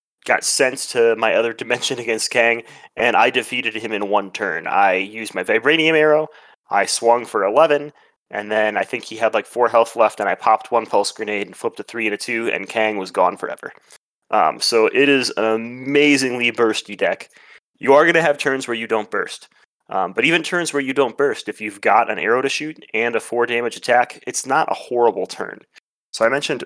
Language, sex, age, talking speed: English, male, 30-49, 220 wpm